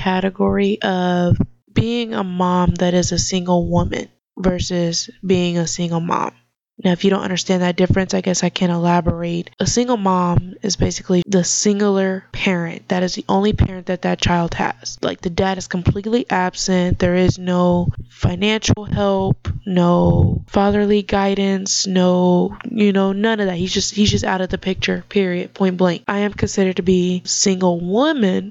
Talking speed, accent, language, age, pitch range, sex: 175 wpm, American, English, 20-39, 180-205 Hz, female